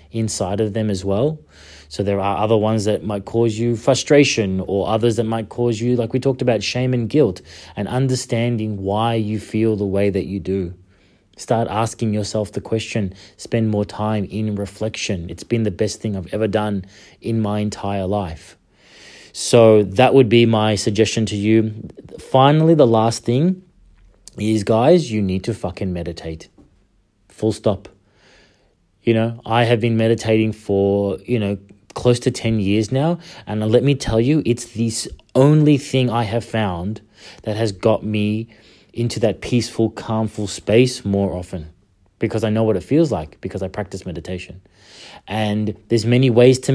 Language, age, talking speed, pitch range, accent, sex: English, 30-49, 170 wpm, 100-115 Hz, Australian, male